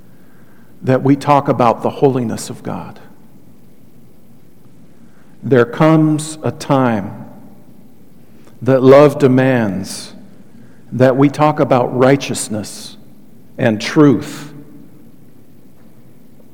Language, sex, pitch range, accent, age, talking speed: English, male, 130-150 Hz, American, 50-69, 80 wpm